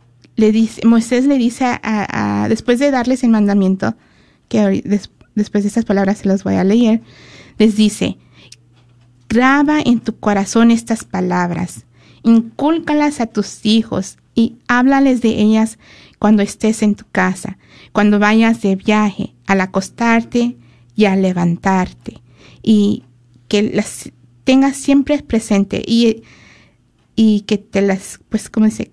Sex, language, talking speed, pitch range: female, Spanish, 140 wpm, 190-230 Hz